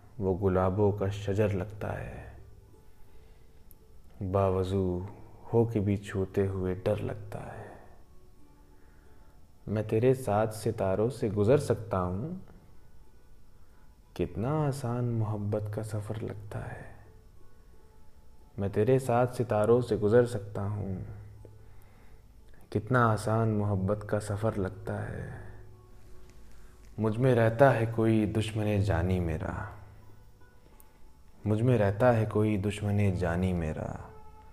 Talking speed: 105 wpm